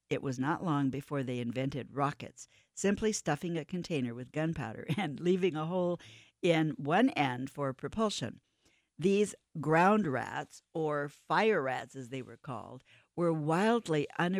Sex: female